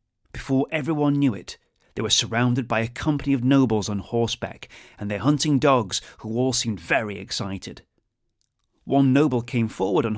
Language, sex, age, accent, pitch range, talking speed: English, male, 30-49, British, 110-135 Hz, 165 wpm